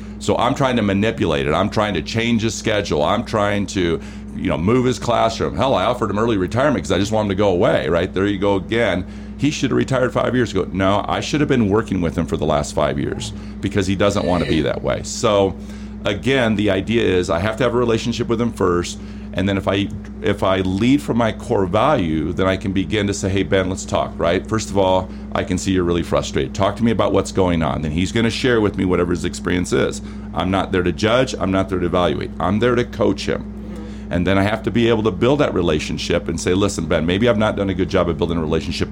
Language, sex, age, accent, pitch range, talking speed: English, male, 40-59, American, 95-110 Hz, 265 wpm